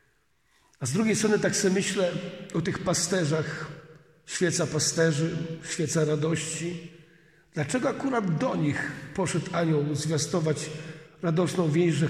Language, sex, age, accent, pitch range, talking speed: Polish, male, 50-69, native, 150-170 Hz, 110 wpm